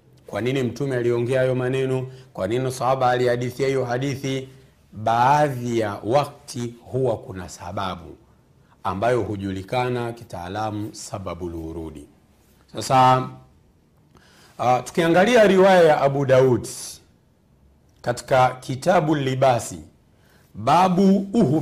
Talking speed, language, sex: 95 wpm, Swahili, male